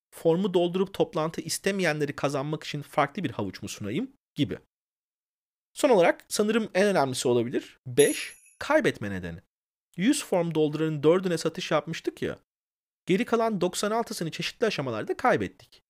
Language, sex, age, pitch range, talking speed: Turkish, male, 40-59, 155-210 Hz, 130 wpm